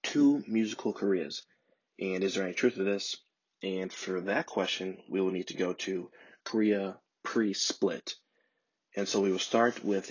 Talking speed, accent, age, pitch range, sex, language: 165 wpm, American, 20-39, 95-110 Hz, male, English